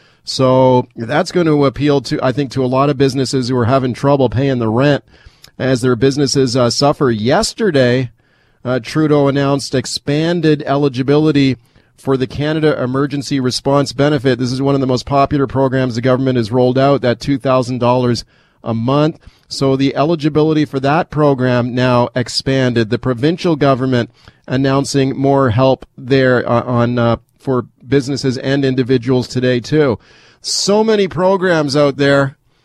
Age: 40-59